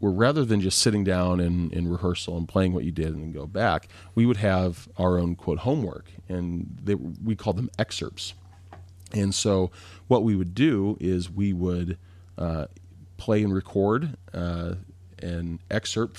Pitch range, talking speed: 90-100 Hz, 170 wpm